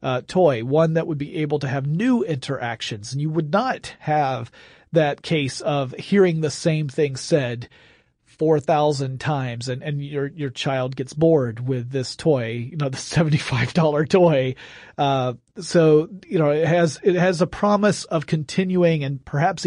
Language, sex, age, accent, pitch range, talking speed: English, male, 40-59, American, 130-160 Hz, 175 wpm